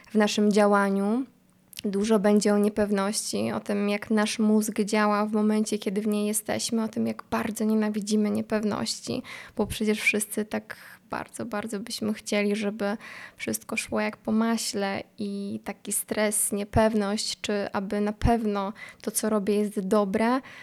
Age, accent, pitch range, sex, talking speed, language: 20-39, native, 205-220 Hz, female, 150 wpm, Polish